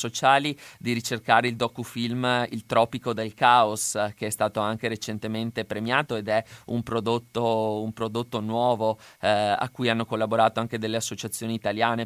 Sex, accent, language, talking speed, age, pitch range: male, native, Italian, 155 wpm, 20-39, 115-130 Hz